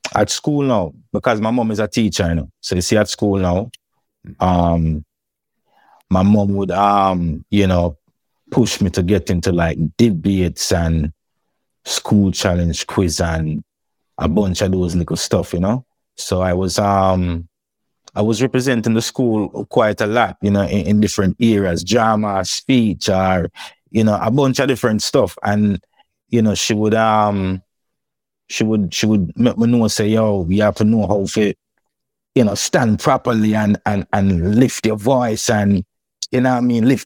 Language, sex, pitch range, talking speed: English, male, 95-115 Hz, 180 wpm